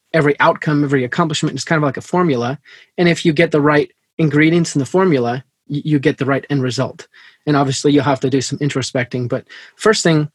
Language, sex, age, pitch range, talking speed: English, male, 20-39, 140-170 Hz, 215 wpm